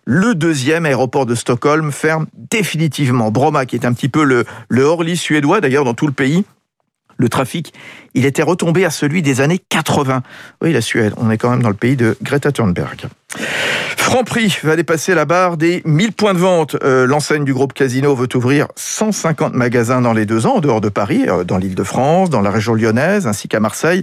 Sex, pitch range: male, 130-175 Hz